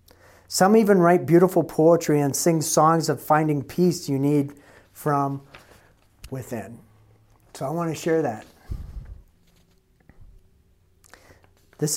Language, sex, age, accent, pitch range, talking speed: English, male, 50-69, American, 95-155 Hz, 110 wpm